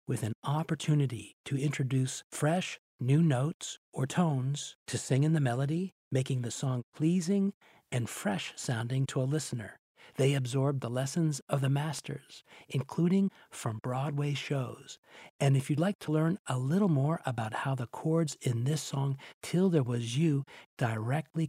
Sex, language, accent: male, English, American